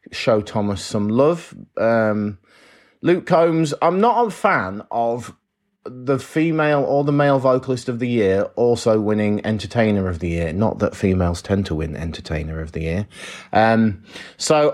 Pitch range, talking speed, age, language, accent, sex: 100-150 Hz, 160 wpm, 30-49, English, British, male